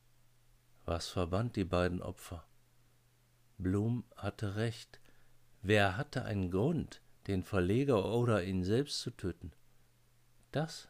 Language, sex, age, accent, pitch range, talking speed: German, male, 50-69, German, 90-120 Hz, 110 wpm